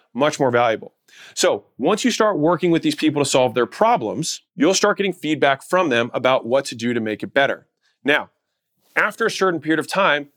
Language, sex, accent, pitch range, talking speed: English, male, American, 125-170 Hz, 210 wpm